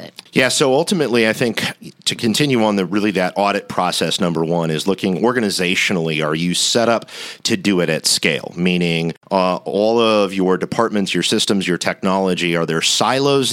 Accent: American